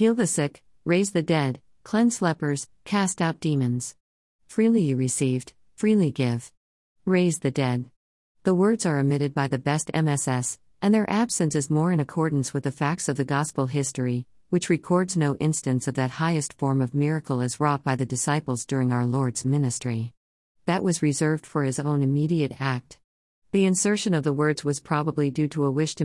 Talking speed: 185 wpm